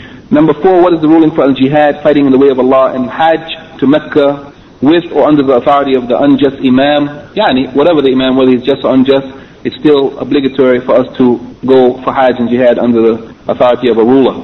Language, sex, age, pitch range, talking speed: English, male, 40-59, 125-140 Hz, 225 wpm